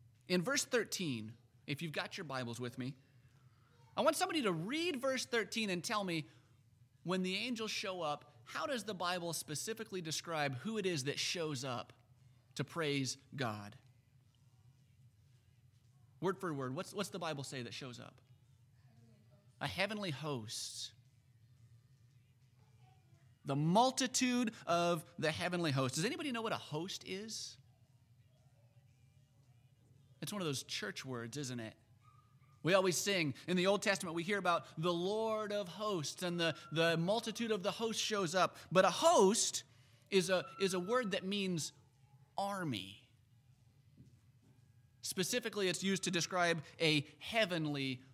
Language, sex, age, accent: English, male, 30-49, American